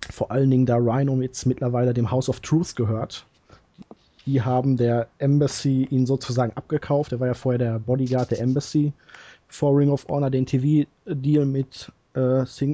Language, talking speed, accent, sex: German, 170 wpm, German, male